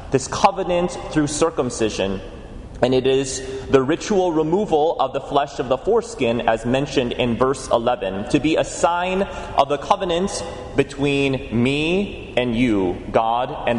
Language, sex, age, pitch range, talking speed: English, male, 30-49, 130-170 Hz, 150 wpm